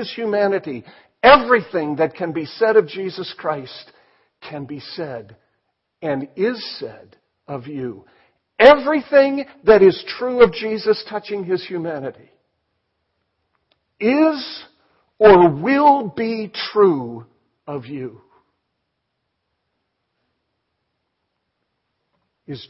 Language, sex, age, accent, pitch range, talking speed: English, male, 60-79, American, 155-255 Hz, 90 wpm